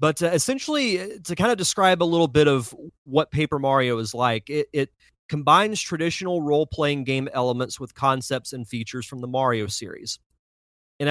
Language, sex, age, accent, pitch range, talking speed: English, male, 30-49, American, 120-155 Hz, 165 wpm